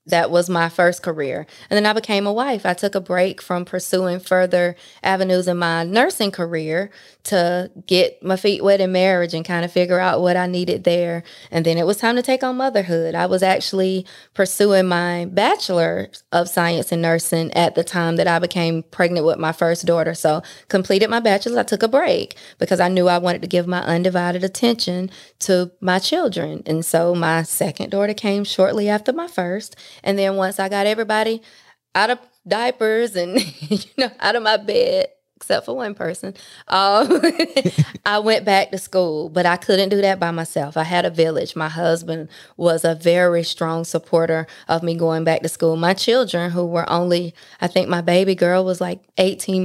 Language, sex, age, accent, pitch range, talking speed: English, female, 20-39, American, 170-200 Hz, 195 wpm